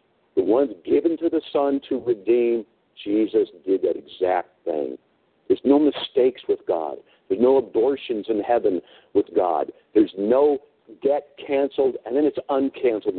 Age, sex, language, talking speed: 50-69, male, English, 150 wpm